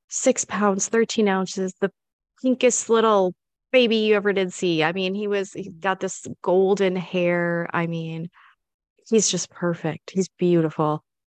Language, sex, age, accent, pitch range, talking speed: English, female, 20-39, American, 165-195 Hz, 150 wpm